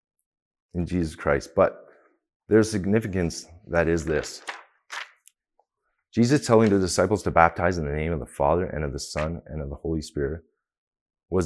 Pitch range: 75-95 Hz